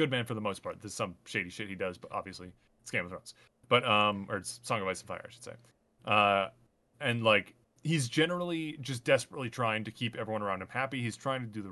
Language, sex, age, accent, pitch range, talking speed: English, male, 30-49, American, 100-125 Hz, 250 wpm